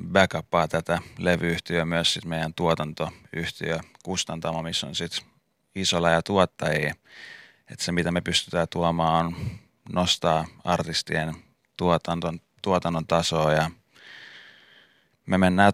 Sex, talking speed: male, 105 wpm